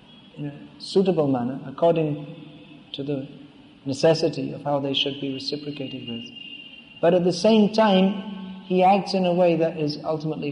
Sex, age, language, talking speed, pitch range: male, 40-59, English, 160 wpm, 145-170 Hz